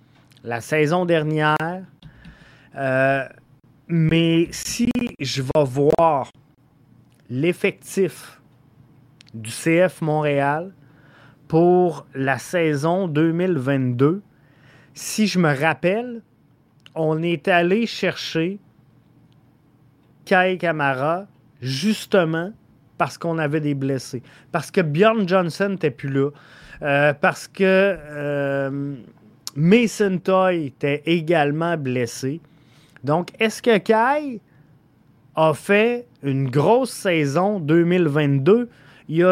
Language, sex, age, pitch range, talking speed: French, male, 30-49, 140-180 Hz, 90 wpm